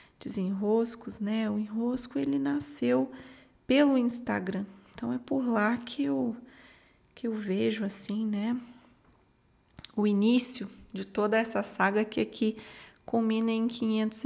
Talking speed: 125 wpm